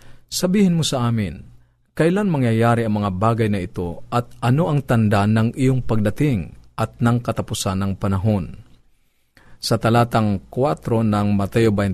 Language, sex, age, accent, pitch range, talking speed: Filipino, male, 40-59, native, 110-125 Hz, 140 wpm